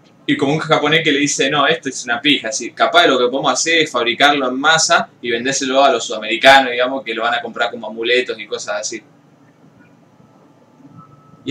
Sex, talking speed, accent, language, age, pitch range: male, 210 wpm, Argentinian, Spanish, 20-39, 125-155 Hz